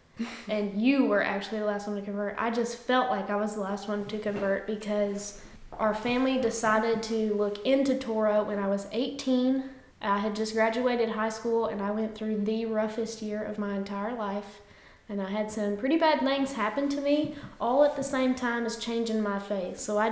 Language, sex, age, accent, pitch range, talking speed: English, female, 10-29, American, 210-250 Hz, 210 wpm